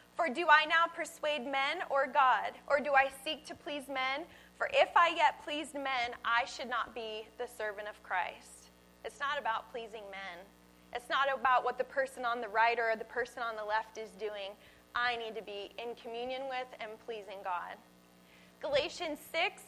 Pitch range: 225-310 Hz